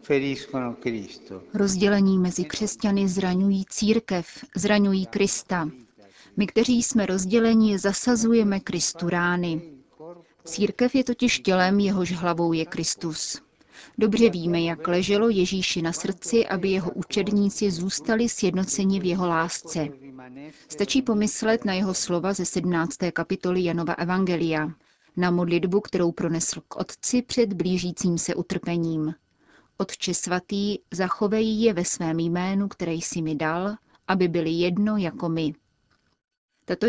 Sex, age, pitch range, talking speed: female, 30-49, 170-205 Hz, 120 wpm